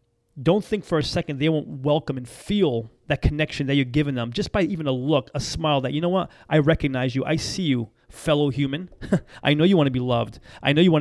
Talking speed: 250 wpm